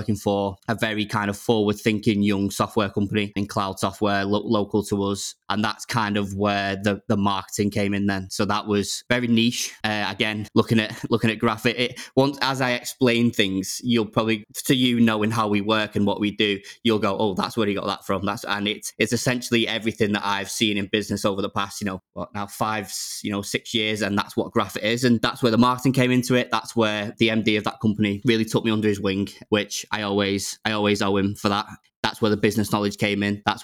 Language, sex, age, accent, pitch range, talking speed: English, male, 20-39, British, 100-115 Hz, 235 wpm